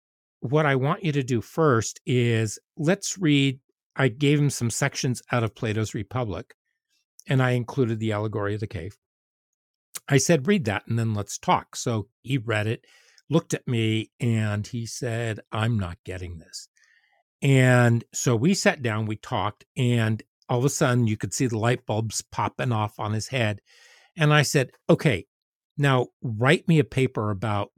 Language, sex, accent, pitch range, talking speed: English, male, American, 110-140 Hz, 175 wpm